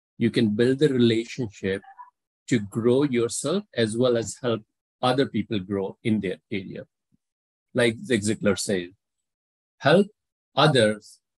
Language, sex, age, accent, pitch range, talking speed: English, male, 50-69, Indian, 105-130 Hz, 125 wpm